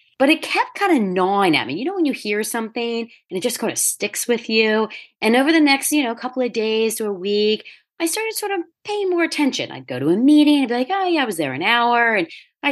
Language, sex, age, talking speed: English, female, 40-59, 280 wpm